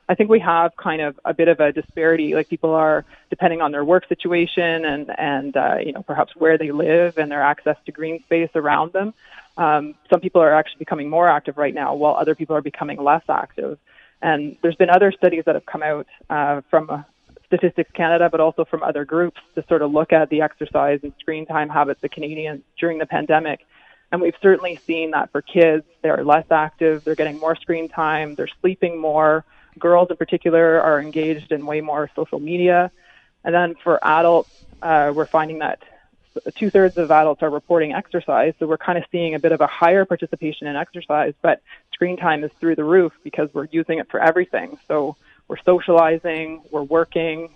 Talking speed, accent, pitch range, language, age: 205 wpm, American, 155-170 Hz, English, 20-39